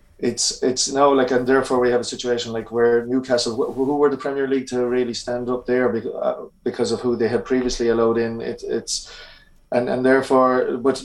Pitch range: 120-130 Hz